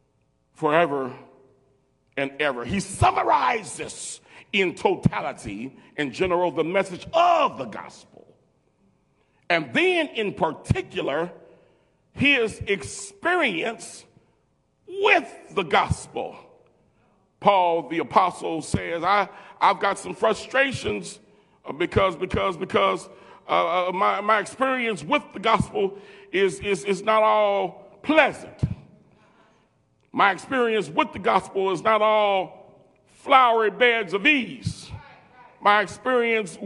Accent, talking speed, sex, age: American, 105 wpm, male, 40-59